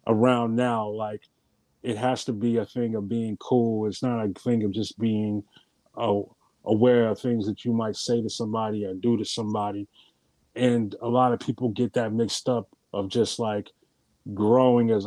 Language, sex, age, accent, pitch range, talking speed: English, male, 30-49, American, 110-125 Hz, 185 wpm